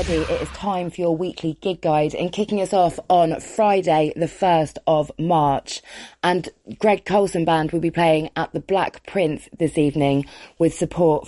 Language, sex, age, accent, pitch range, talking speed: English, female, 20-39, British, 145-175 Hz, 175 wpm